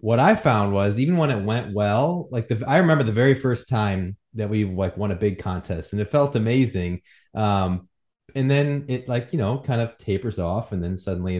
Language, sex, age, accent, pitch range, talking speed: English, male, 20-39, American, 100-135 Hz, 215 wpm